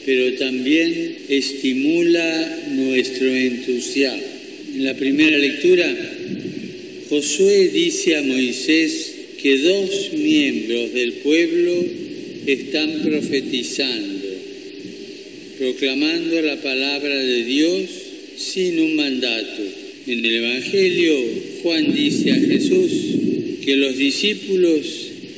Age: 50-69